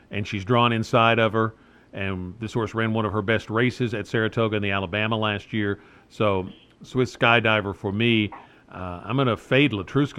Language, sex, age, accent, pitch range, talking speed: English, male, 50-69, American, 100-120 Hz, 195 wpm